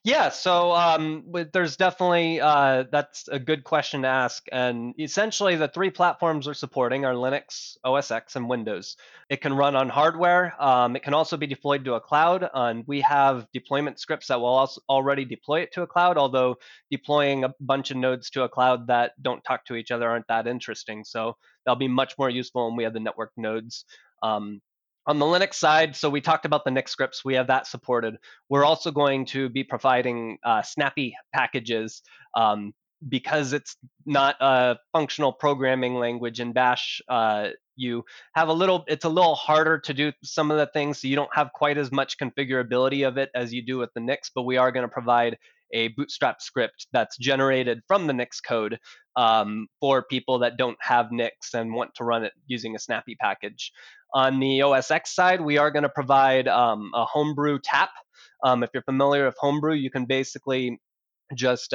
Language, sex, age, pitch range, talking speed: English, male, 20-39, 125-150 Hz, 195 wpm